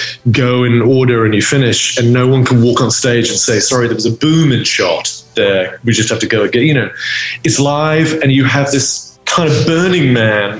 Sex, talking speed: male, 230 wpm